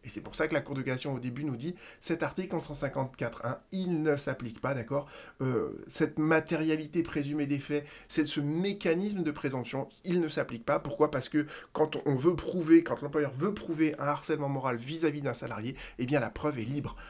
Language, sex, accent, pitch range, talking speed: French, male, French, 135-170 Hz, 210 wpm